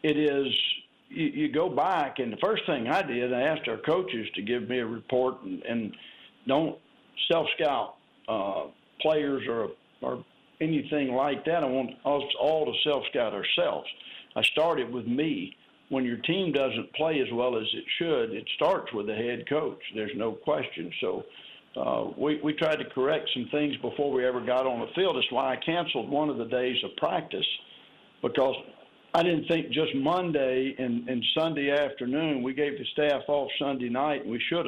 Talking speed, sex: 190 wpm, male